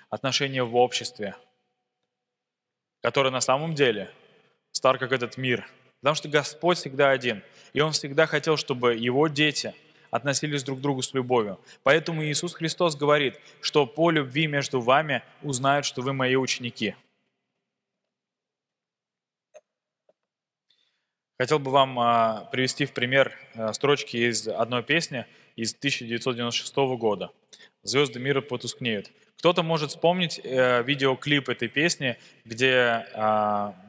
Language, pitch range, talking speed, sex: Russian, 120-145 Hz, 120 wpm, male